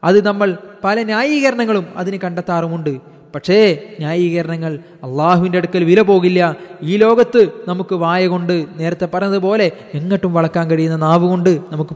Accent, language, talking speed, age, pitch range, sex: native, Malayalam, 125 wpm, 20-39, 160-185 Hz, male